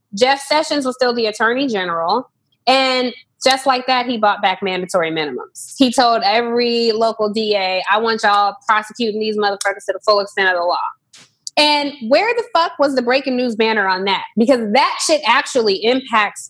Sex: female